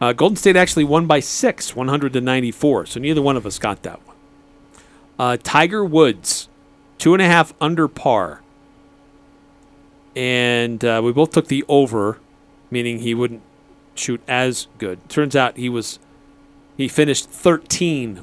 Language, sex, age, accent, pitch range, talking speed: English, male, 40-59, American, 130-160 Hz, 150 wpm